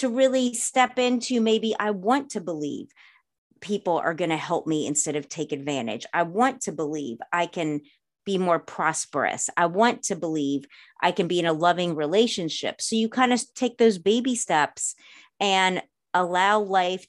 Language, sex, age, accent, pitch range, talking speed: English, female, 30-49, American, 170-215 Hz, 175 wpm